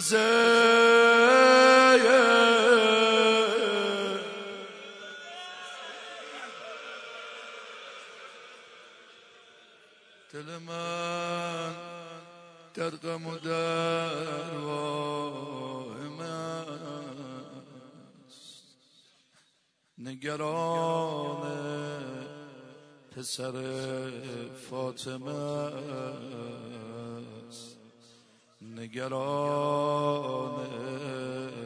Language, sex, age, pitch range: Persian, male, 50-69, 130-165 Hz